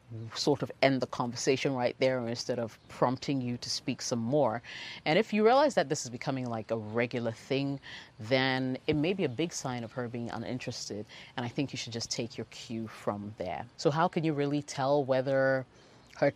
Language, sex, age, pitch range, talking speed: English, female, 30-49, 115-140 Hz, 210 wpm